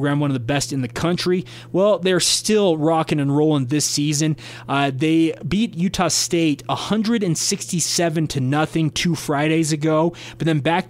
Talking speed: 160 wpm